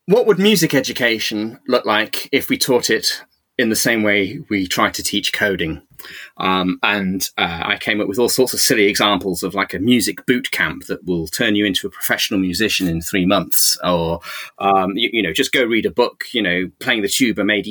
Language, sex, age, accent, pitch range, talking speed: English, male, 30-49, British, 100-140 Hz, 215 wpm